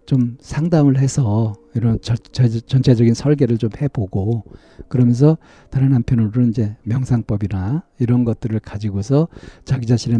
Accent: native